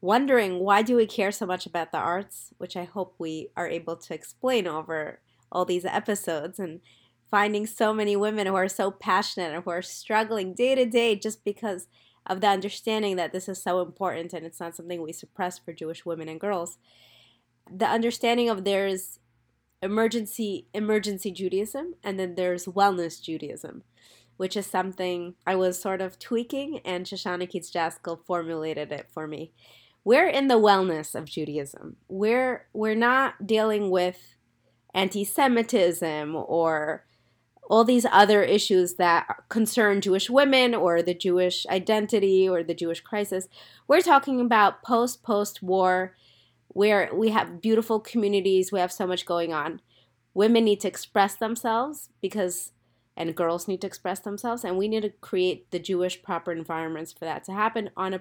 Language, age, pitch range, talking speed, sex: English, 20-39, 170-210 Hz, 165 wpm, female